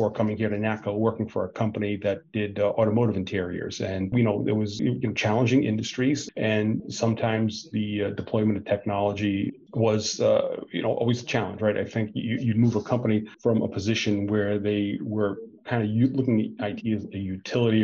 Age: 40-59